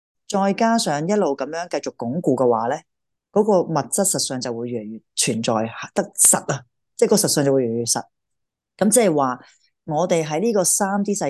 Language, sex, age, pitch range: Chinese, female, 30-49, 130-180 Hz